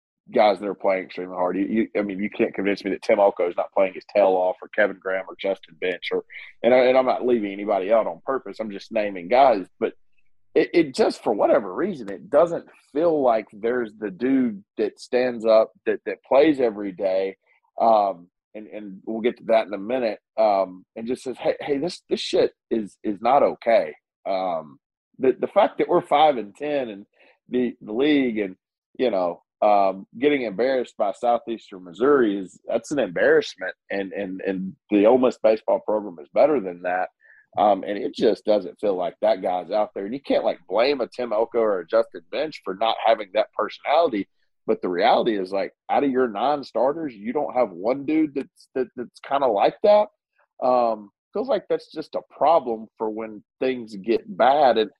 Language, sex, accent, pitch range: English, male, American, 100-130 Hz